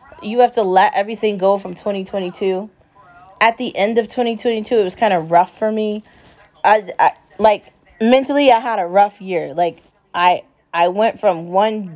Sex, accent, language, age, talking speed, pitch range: female, American, English, 20-39, 175 wpm, 180-220 Hz